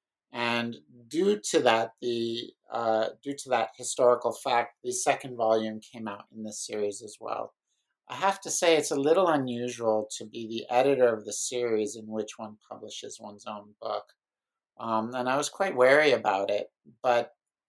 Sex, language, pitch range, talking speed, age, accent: male, English, 110-130 Hz, 175 wpm, 50-69, American